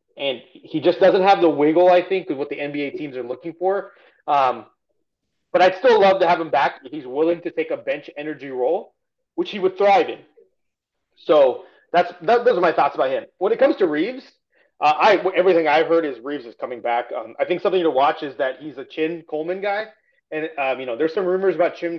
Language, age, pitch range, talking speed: English, 30-49, 150-185 Hz, 235 wpm